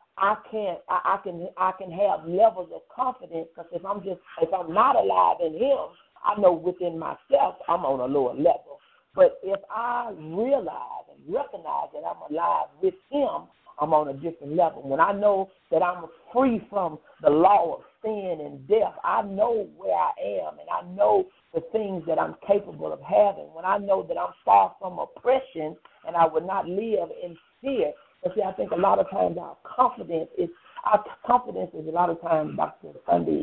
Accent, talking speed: American, 195 wpm